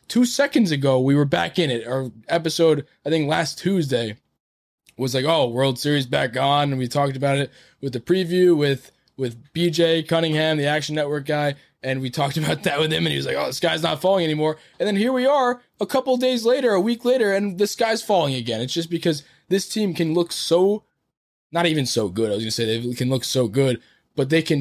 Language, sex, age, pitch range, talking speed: English, male, 20-39, 130-170 Hz, 235 wpm